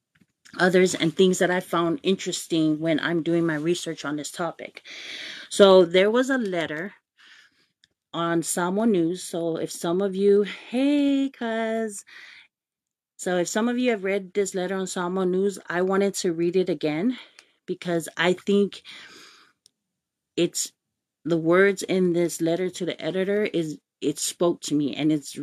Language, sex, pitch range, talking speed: English, female, 170-200 Hz, 160 wpm